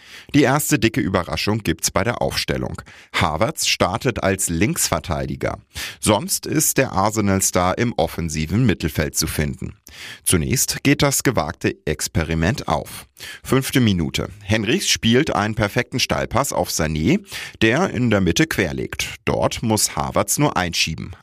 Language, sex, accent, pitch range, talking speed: German, male, German, 85-120 Hz, 130 wpm